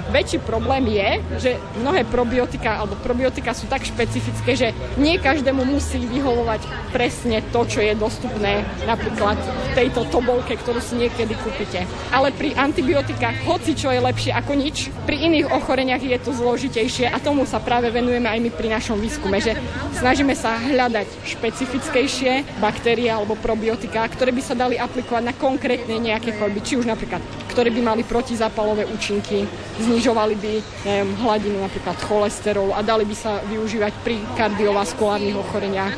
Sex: female